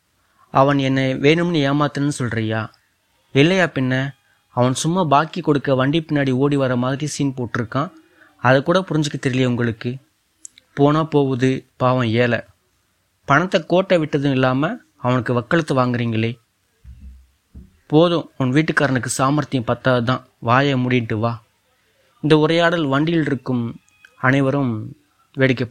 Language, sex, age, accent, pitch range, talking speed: Tamil, male, 20-39, native, 120-150 Hz, 110 wpm